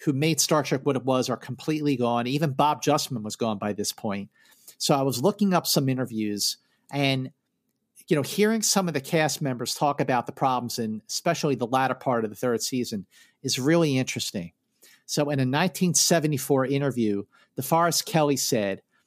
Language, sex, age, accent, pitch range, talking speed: English, male, 50-69, American, 125-165 Hz, 185 wpm